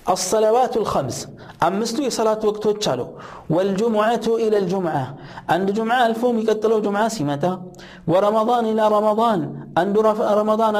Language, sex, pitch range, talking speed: Amharic, male, 195-220 Hz, 90 wpm